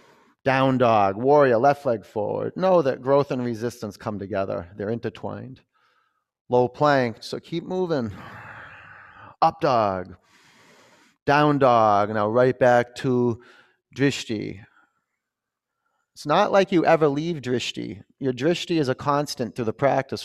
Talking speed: 130 wpm